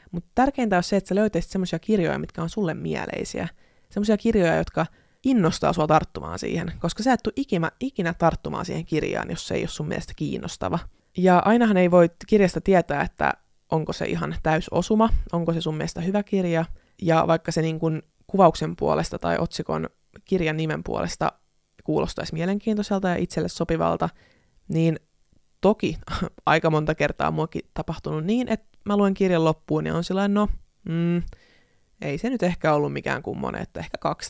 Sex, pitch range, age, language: female, 160-205 Hz, 20-39, Finnish